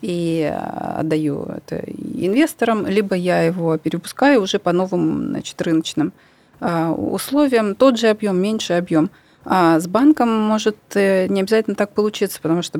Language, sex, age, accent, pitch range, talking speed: Russian, female, 30-49, native, 165-200 Hz, 135 wpm